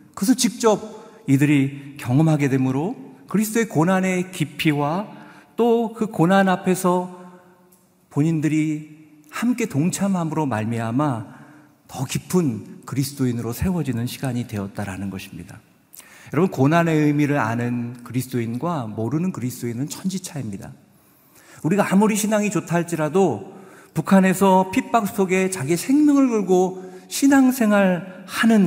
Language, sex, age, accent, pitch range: Korean, male, 50-69, native, 135-190 Hz